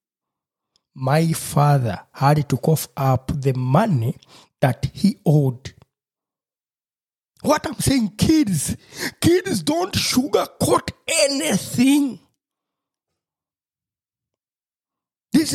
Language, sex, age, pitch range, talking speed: English, male, 60-79, 140-235 Hz, 75 wpm